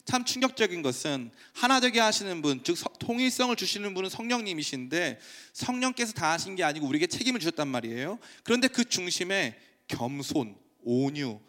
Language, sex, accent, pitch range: Korean, male, native, 150-245 Hz